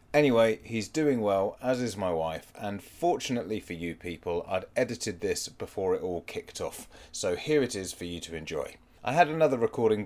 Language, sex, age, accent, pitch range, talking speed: English, male, 30-49, British, 95-130 Hz, 195 wpm